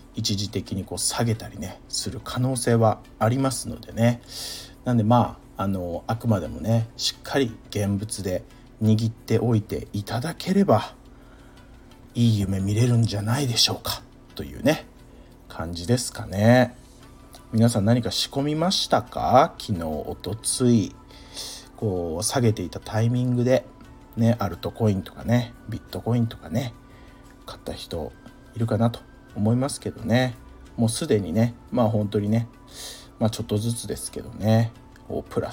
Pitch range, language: 110-130 Hz, Japanese